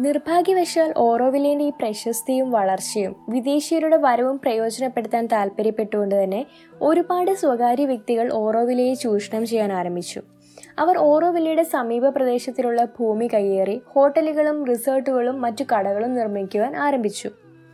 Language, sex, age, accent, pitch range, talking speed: Malayalam, female, 20-39, native, 220-290 Hz, 105 wpm